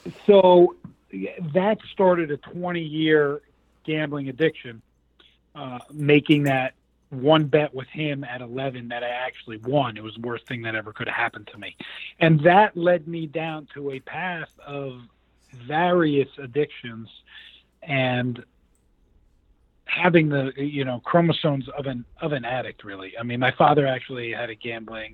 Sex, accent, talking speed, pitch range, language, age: male, American, 155 wpm, 120-160 Hz, English, 40-59